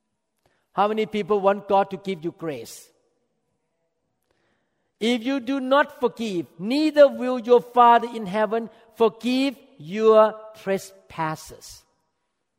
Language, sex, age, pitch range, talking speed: English, male, 50-69, 150-205 Hz, 110 wpm